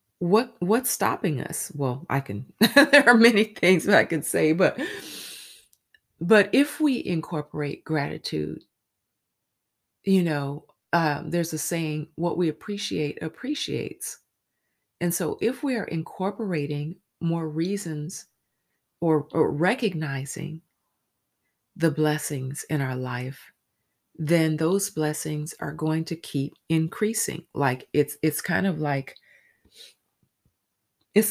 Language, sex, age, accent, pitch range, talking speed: English, female, 30-49, American, 140-170 Hz, 115 wpm